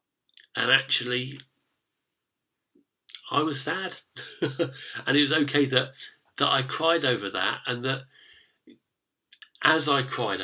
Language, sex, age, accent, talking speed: English, male, 40-59, British, 115 wpm